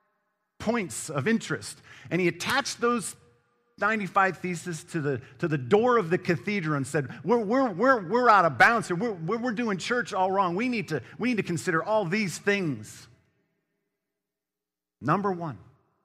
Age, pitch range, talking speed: 50-69, 130-200 Hz, 155 wpm